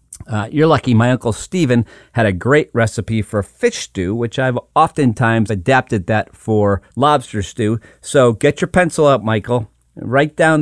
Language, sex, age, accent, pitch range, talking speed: English, male, 40-59, American, 105-145 Hz, 165 wpm